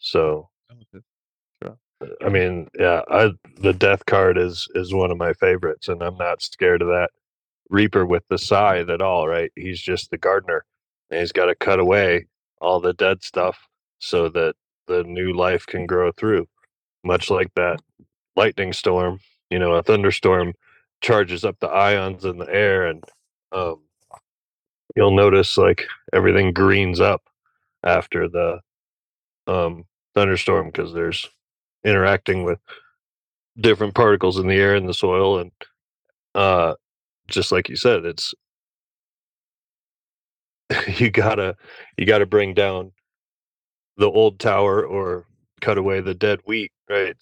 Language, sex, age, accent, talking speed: English, male, 30-49, American, 140 wpm